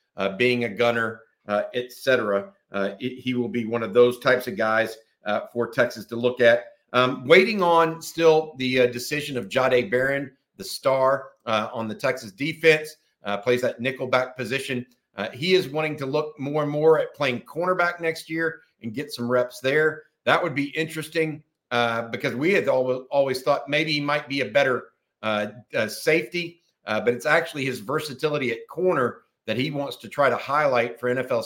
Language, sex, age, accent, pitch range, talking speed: English, male, 50-69, American, 120-155 Hz, 195 wpm